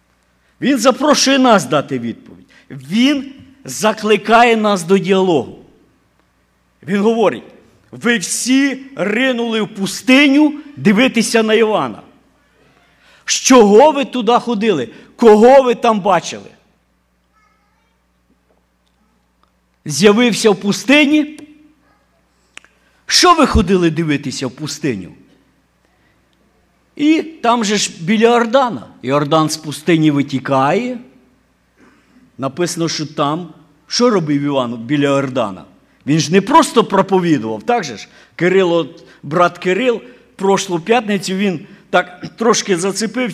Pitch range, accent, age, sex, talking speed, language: 155-240 Hz, native, 50-69, male, 100 wpm, Ukrainian